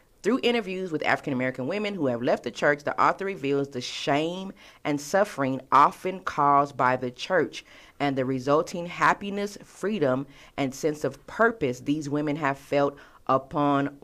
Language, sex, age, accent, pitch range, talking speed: English, female, 40-59, American, 135-175 Hz, 155 wpm